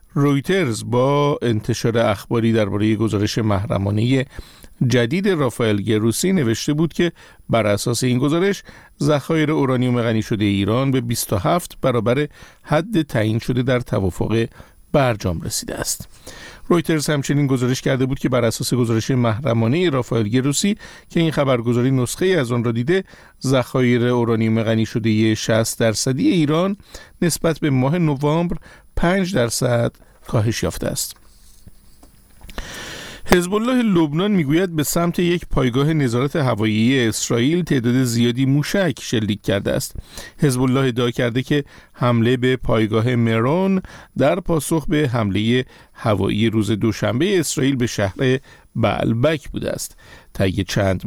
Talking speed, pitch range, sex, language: 130 wpm, 115-155 Hz, male, Persian